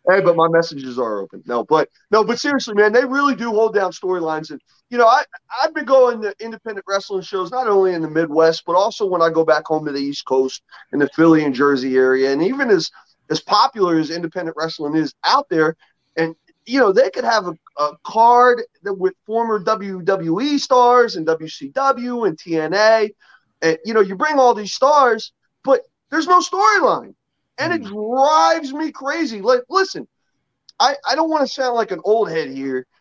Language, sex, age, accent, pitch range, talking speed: English, male, 30-49, American, 160-245 Hz, 200 wpm